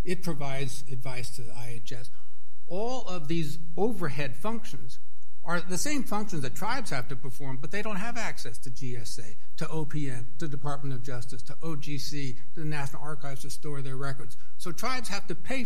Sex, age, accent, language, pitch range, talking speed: male, 60-79, American, English, 135-175 Hz, 185 wpm